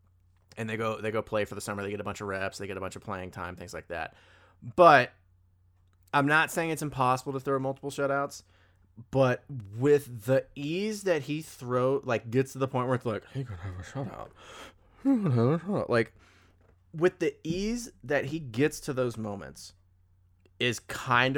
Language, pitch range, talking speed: English, 95-135 Hz, 200 wpm